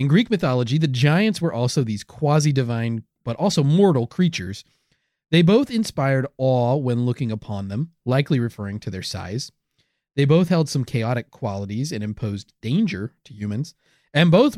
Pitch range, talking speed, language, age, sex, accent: 120-180 Hz, 160 wpm, English, 30-49, male, American